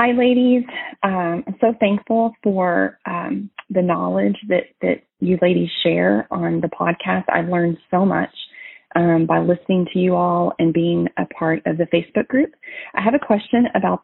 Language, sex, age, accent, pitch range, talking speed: English, female, 30-49, American, 170-200 Hz, 175 wpm